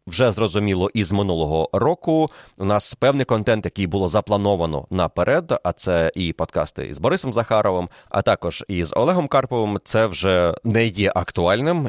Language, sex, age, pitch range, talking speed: Ukrainian, male, 30-49, 90-115 Hz, 150 wpm